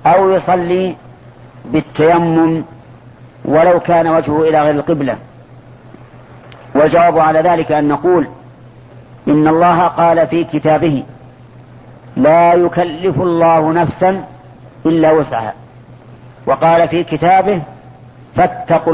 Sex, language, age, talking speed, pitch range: female, Arabic, 50-69, 90 wpm, 125-170 Hz